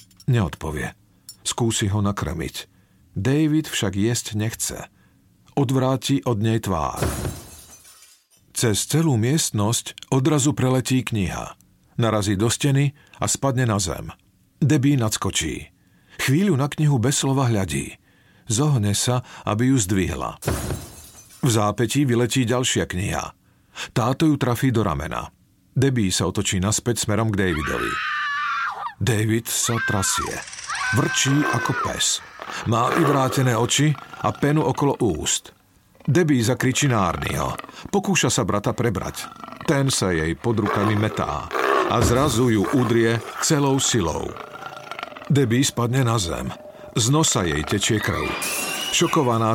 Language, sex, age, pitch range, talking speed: Slovak, male, 50-69, 105-140 Hz, 120 wpm